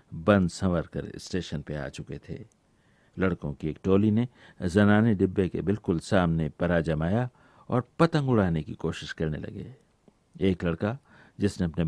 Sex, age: male, 60-79